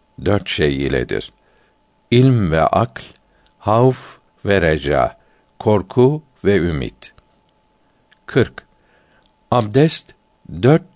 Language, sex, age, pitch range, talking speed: Turkish, male, 60-79, 90-120 Hz, 80 wpm